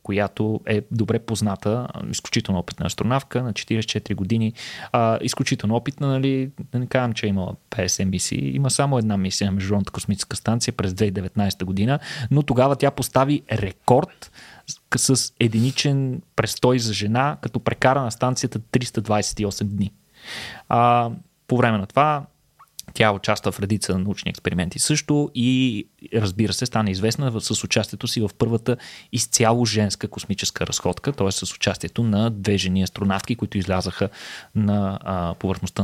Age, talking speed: 20-39, 145 wpm